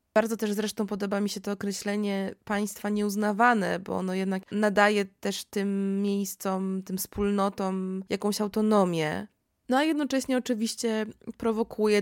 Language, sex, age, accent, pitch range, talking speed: Polish, female, 20-39, native, 185-210 Hz, 130 wpm